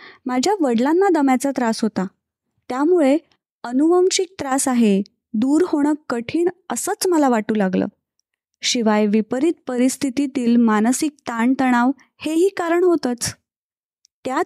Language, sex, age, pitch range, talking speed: Marathi, female, 20-39, 240-310 Hz, 105 wpm